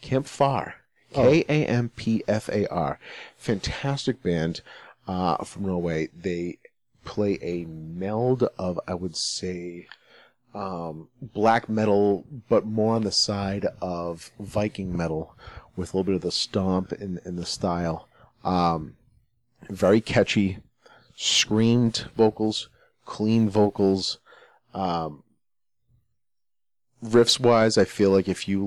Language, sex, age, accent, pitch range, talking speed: English, male, 40-59, American, 85-110 Hz, 110 wpm